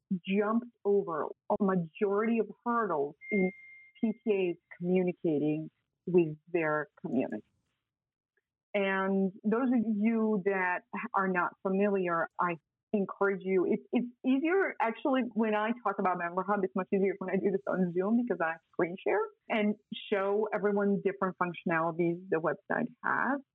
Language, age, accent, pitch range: English, 30-49, American, 185-225 Hz